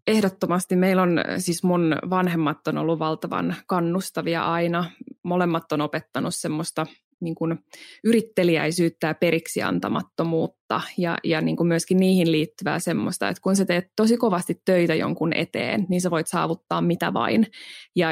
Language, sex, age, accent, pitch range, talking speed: Finnish, female, 20-39, native, 160-185 Hz, 135 wpm